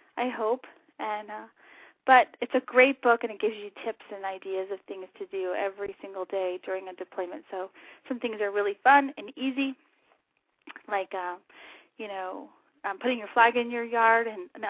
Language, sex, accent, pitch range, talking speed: English, female, American, 210-265 Hz, 190 wpm